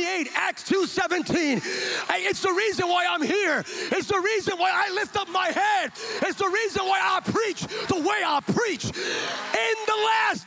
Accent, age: American, 40-59